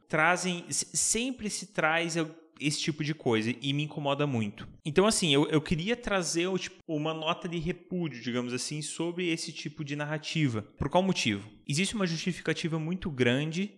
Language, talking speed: Portuguese, 160 wpm